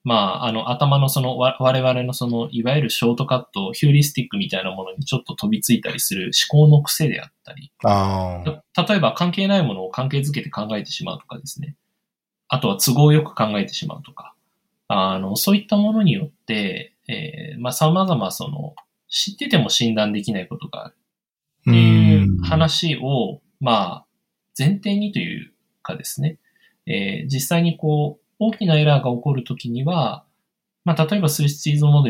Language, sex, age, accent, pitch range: Japanese, male, 20-39, native, 120-175 Hz